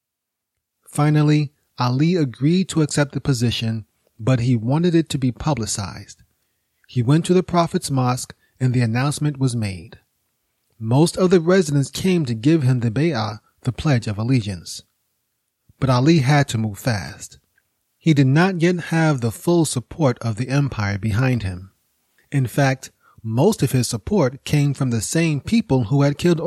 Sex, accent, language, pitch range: male, American, English, 120-155 Hz